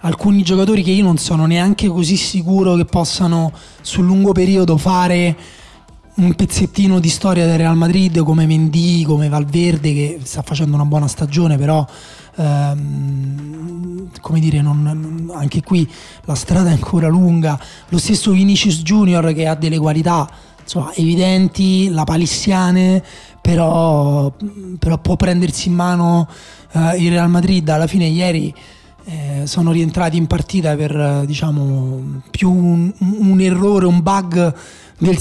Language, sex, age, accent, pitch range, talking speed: Italian, male, 20-39, native, 155-185 Hz, 145 wpm